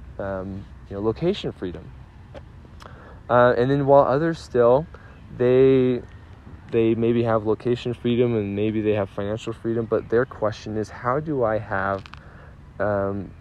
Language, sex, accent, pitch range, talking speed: English, male, American, 100-120 Hz, 145 wpm